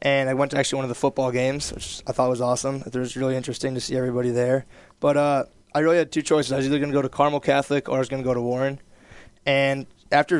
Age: 20-39